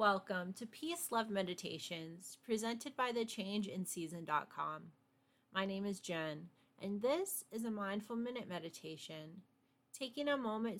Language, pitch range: English, 135-190 Hz